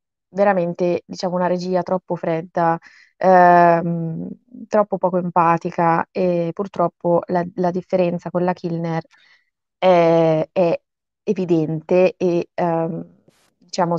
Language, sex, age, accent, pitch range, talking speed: Italian, female, 20-39, native, 170-190 Hz, 105 wpm